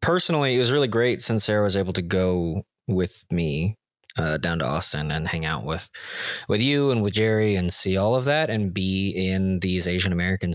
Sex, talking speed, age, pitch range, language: male, 205 wpm, 20-39, 90-115 Hz, English